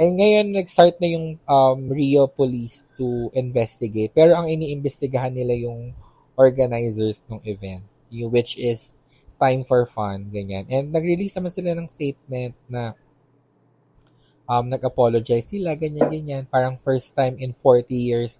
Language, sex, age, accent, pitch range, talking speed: Filipino, male, 20-39, native, 110-140 Hz, 135 wpm